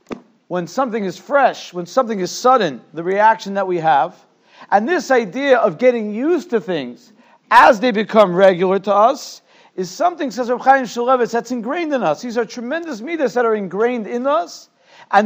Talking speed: 180 wpm